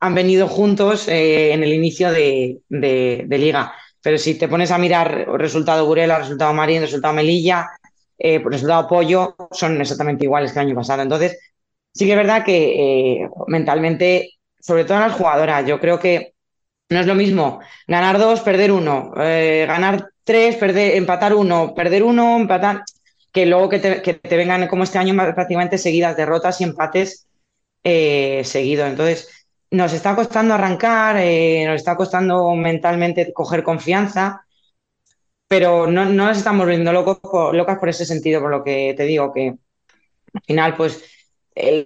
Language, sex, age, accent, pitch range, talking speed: Spanish, female, 20-39, Spanish, 155-185 Hz, 170 wpm